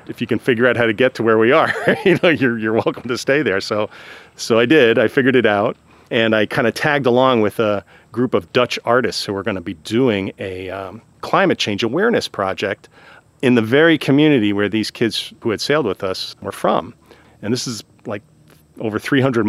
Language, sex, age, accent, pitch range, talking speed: English, male, 40-59, American, 100-130 Hz, 220 wpm